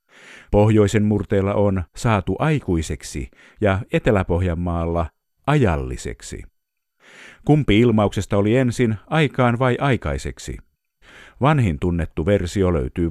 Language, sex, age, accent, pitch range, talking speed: Finnish, male, 50-69, native, 85-115 Hz, 85 wpm